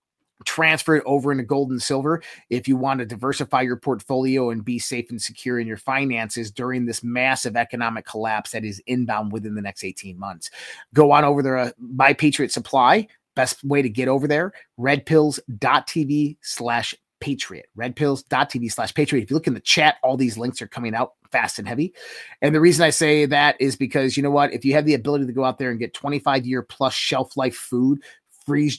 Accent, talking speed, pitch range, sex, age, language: American, 205 wpm, 120-145 Hz, male, 30-49, English